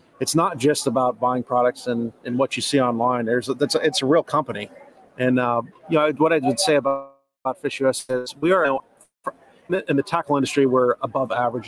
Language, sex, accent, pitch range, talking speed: English, male, American, 120-140 Hz, 210 wpm